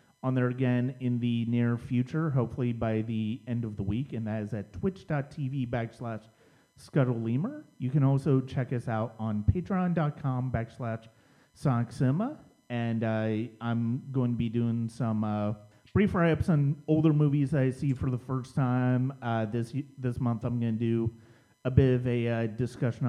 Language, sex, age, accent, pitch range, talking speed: English, male, 30-49, American, 115-145 Hz, 165 wpm